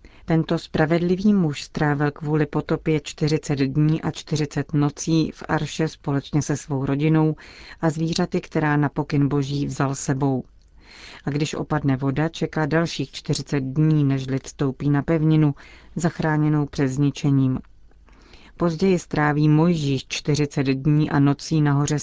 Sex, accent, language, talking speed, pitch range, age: female, native, Czech, 135 wpm, 140-155 Hz, 40-59